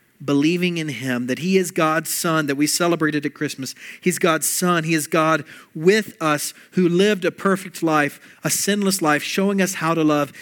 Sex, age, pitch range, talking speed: male, 40-59, 150-195 Hz, 195 wpm